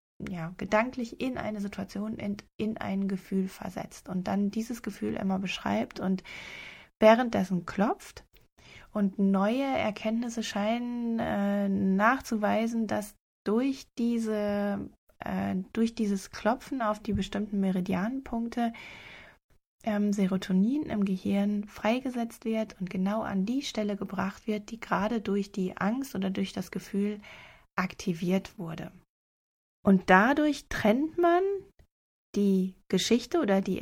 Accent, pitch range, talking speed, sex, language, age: German, 190-225 Hz, 120 wpm, female, German, 20-39